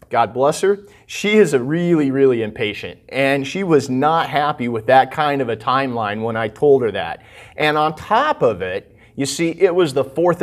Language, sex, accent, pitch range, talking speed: English, male, American, 140-190 Hz, 205 wpm